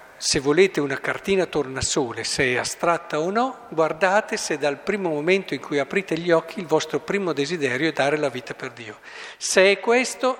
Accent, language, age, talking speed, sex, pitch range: native, Italian, 50-69, 195 wpm, male, 150-235 Hz